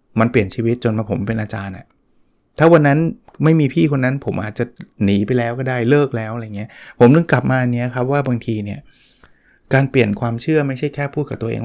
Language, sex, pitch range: Thai, male, 115-145 Hz